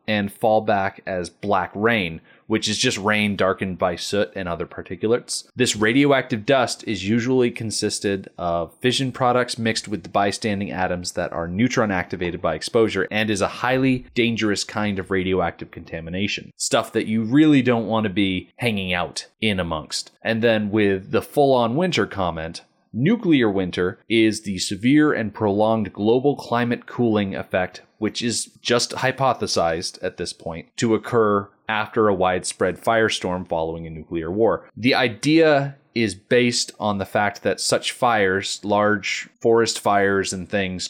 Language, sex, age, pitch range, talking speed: English, male, 30-49, 95-120 Hz, 155 wpm